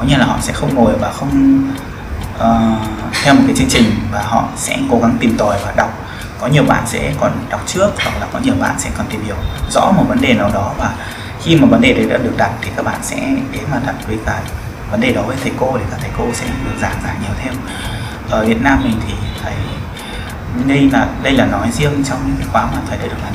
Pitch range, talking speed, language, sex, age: 105-130 Hz, 255 wpm, Vietnamese, male, 20-39